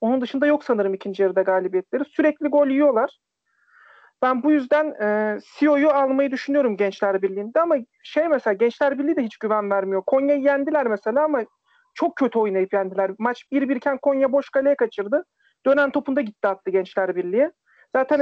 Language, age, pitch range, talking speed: Turkish, 40-59, 230-290 Hz, 165 wpm